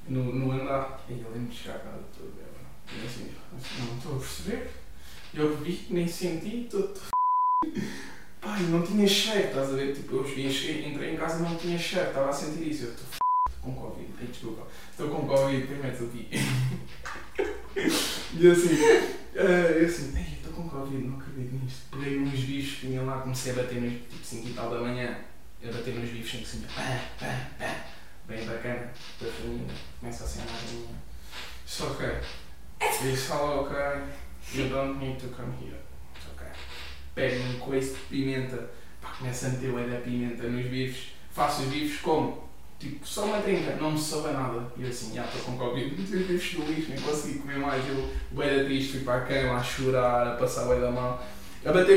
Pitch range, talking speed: 120-155 Hz, 200 wpm